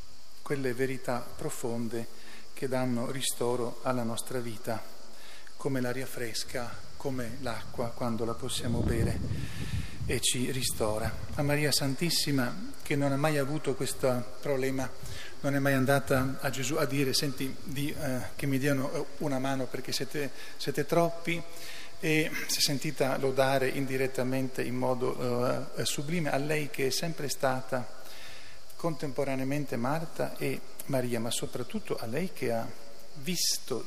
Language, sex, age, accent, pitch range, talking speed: Italian, male, 40-59, native, 125-145 Hz, 135 wpm